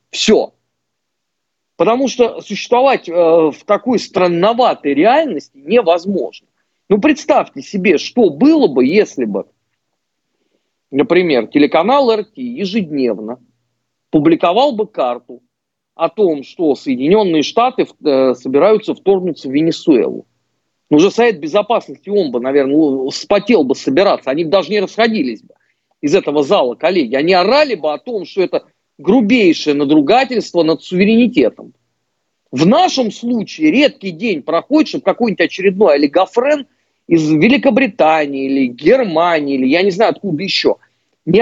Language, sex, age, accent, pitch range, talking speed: Russian, male, 40-59, native, 150-240 Hz, 130 wpm